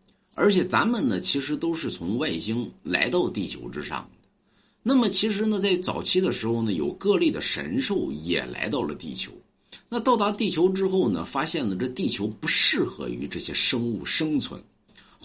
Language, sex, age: Chinese, male, 50-69